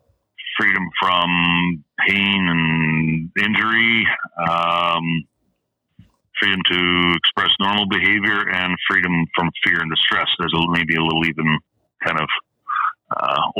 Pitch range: 80-95 Hz